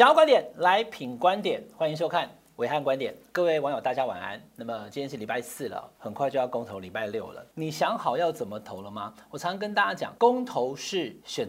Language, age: Chinese, 40-59